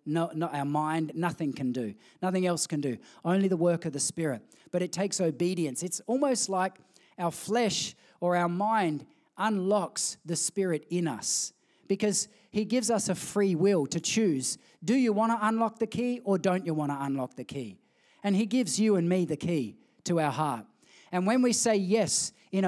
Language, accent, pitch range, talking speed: English, Australian, 165-210 Hz, 200 wpm